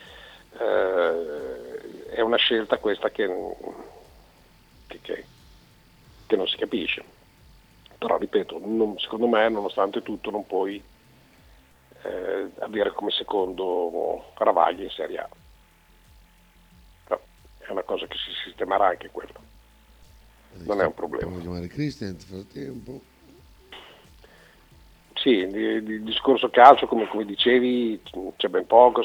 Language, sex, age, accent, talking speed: Italian, male, 50-69, native, 115 wpm